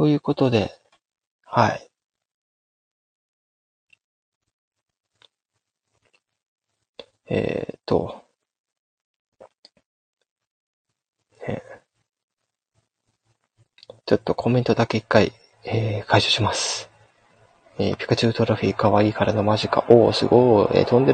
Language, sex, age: Japanese, male, 30-49